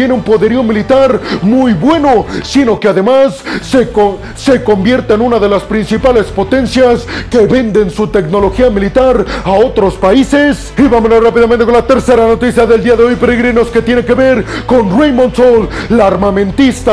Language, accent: Spanish, Mexican